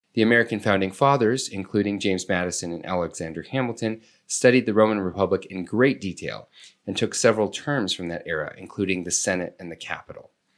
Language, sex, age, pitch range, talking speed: English, male, 30-49, 95-115 Hz, 170 wpm